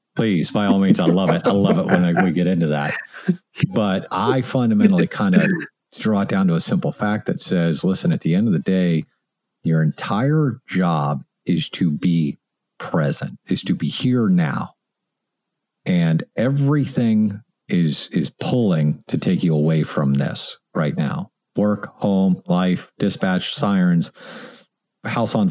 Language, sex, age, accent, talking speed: English, male, 50-69, American, 160 wpm